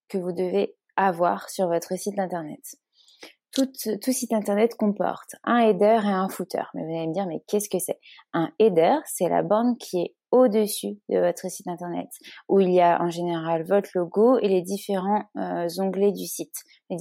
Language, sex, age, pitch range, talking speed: French, female, 20-39, 170-205 Hz, 195 wpm